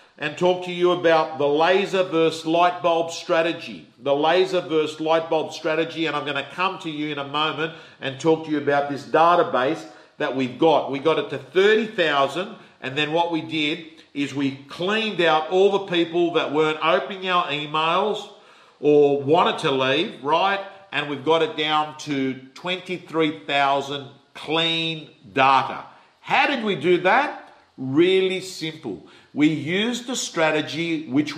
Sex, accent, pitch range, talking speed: male, Australian, 150-180 Hz, 165 wpm